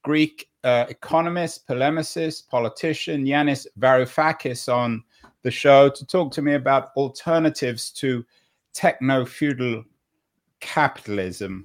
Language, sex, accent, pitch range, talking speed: English, male, British, 120-150 Hz, 105 wpm